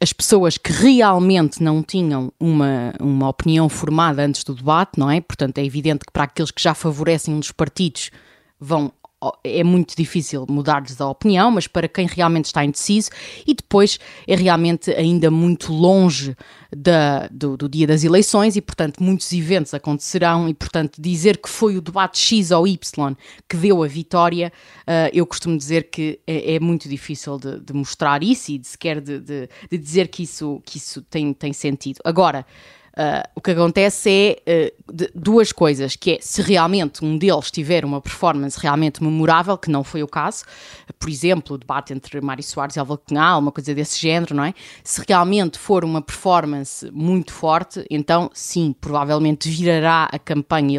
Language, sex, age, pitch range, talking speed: Portuguese, female, 20-39, 145-180 Hz, 170 wpm